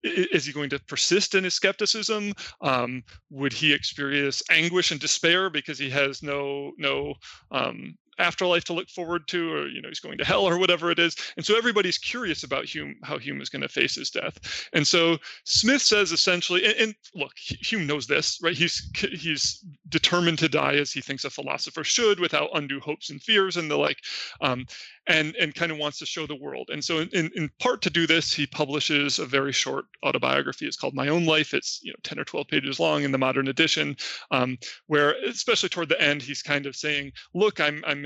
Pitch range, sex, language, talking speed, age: 145-185 Hz, male, English, 210 wpm, 30-49